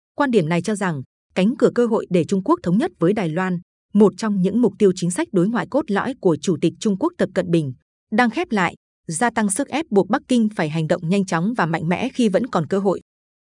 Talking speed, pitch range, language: 265 wpm, 175-230 Hz, Vietnamese